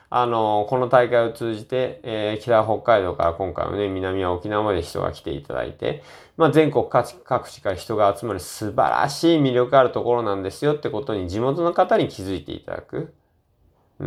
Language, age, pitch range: Japanese, 20-39, 95-145 Hz